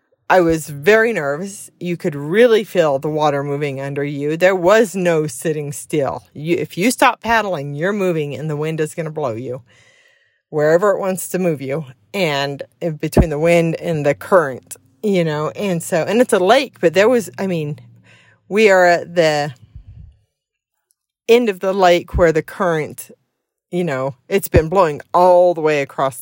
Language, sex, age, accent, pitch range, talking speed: English, female, 40-59, American, 155-240 Hz, 180 wpm